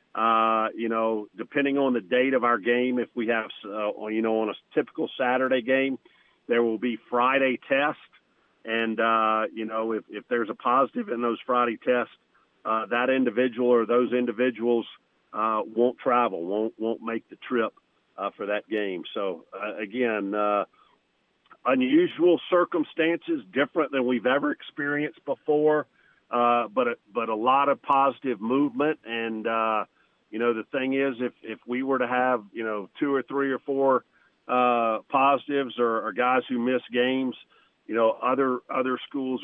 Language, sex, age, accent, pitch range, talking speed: English, male, 50-69, American, 110-130 Hz, 170 wpm